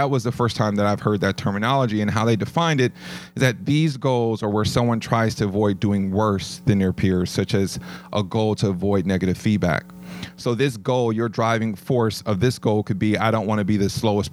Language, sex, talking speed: English, male, 235 wpm